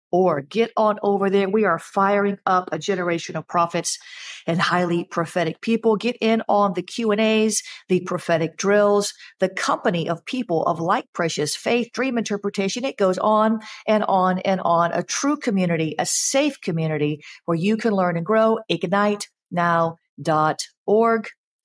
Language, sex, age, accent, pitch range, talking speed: English, female, 50-69, American, 175-225 Hz, 150 wpm